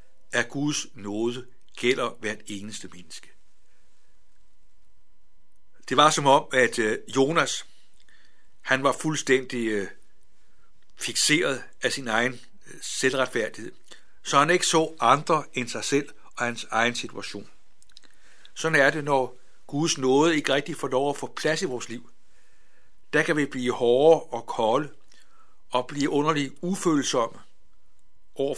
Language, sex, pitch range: Danish, male, 115-145 Hz